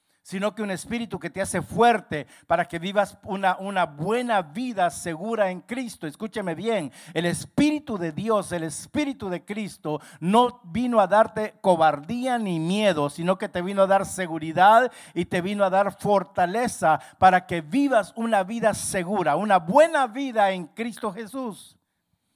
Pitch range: 175-230 Hz